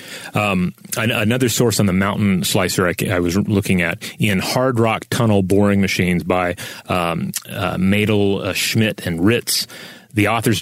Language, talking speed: English, 160 wpm